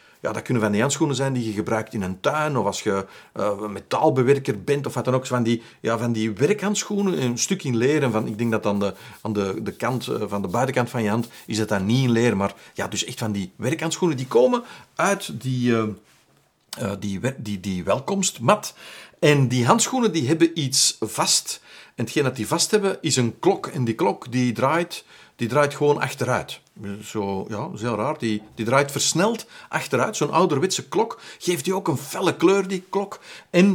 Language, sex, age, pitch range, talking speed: Dutch, male, 50-69, 115-160 Hz, 205 wpm